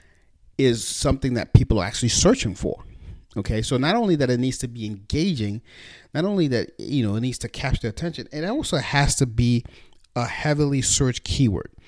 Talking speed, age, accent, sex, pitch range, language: 190 wpm, 40-59, American, male, 100-135 Hz, English